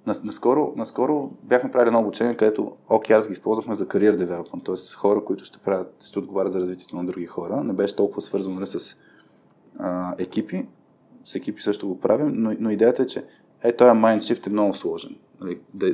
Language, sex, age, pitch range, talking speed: Bulgarian, male, 20-39, 95-115 Hz, 185 wpm